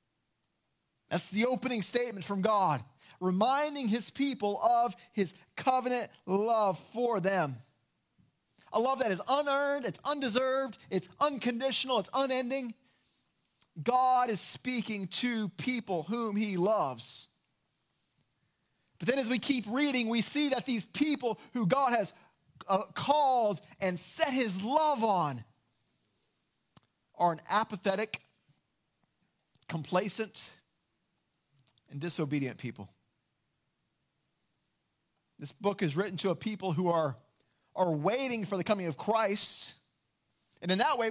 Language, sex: English, male